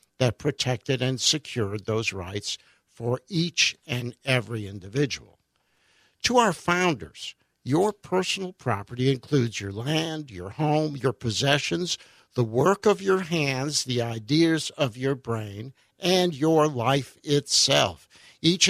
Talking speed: 125 wpm